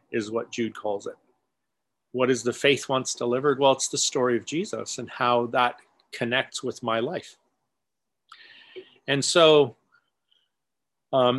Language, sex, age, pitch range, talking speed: English, male, 40-59, 120-145 Hz, 140 wpm